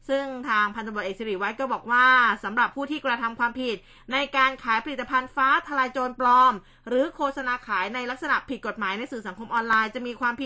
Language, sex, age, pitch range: Thai, female, 20-39, 225-270 Hz